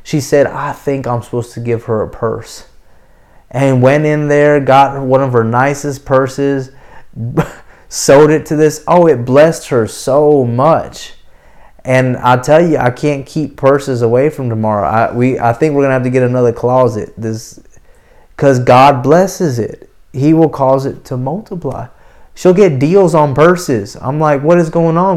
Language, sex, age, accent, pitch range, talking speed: English, male, 30-49, American, 120-150 Hz, 175 wpm